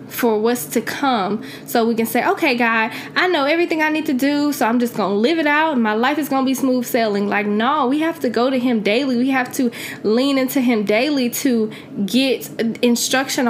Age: 10-29